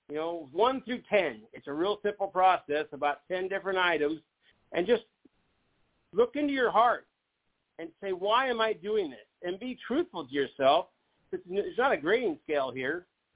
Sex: male